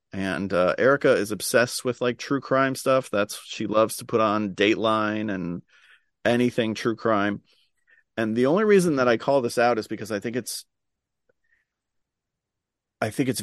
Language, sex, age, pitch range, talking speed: English, male, 40-59, 100-120 Hz, 170 wpm